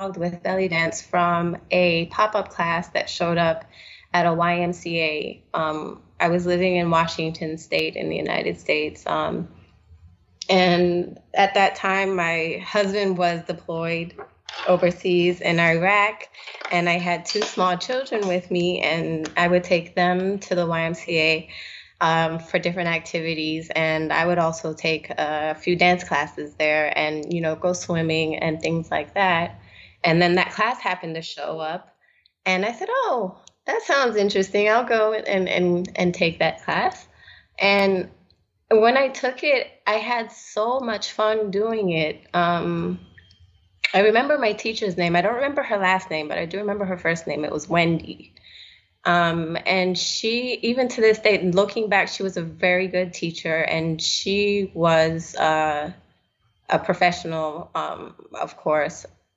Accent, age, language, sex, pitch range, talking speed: American, 20-39, English, female, 160-195 Hz, 160 wpm